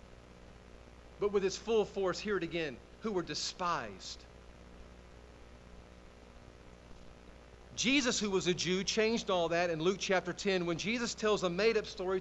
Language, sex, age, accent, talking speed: English, male, 40-59, American, 145 wpm